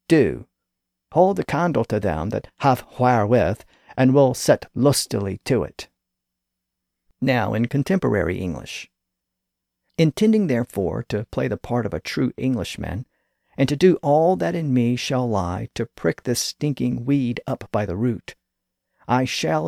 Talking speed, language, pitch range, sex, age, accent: 150 wpm, English, 95-130 Hz, male, 50-69, American